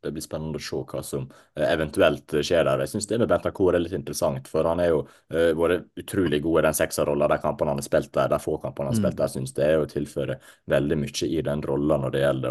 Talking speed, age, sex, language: 270 wpm, 30-49, male, English